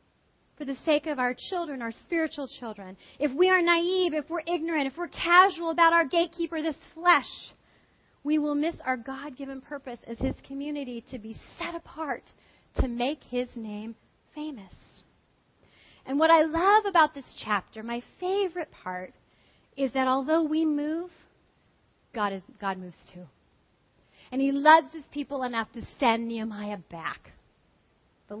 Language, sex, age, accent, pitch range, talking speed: English, female, 30-49, American, 240-315 Hz, 155 wpm